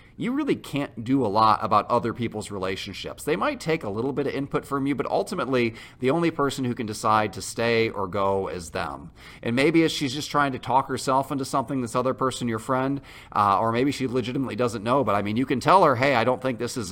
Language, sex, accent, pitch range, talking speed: English, male, American, 110-140 Hz, 250 wpm